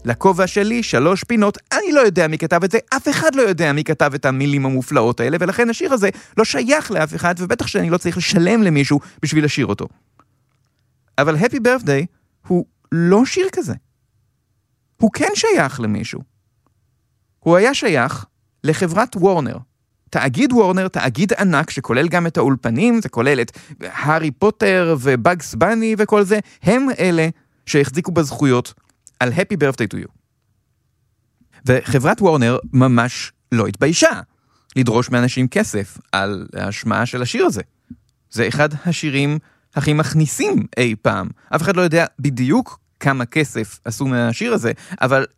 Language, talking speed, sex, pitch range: Hebrew, 145 wpm, male, 120-180 Hz